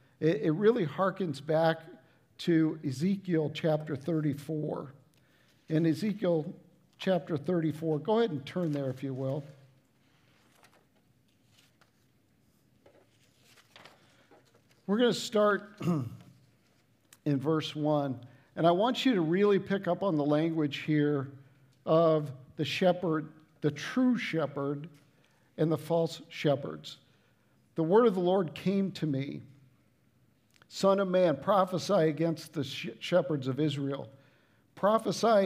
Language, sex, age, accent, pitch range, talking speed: English, male, 50-69, American, 140-180 Hz, 115 wpm